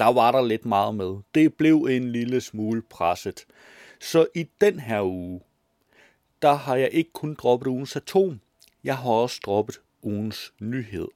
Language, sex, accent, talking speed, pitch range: Danish, male, native, 165 wpm, 105-165 Hz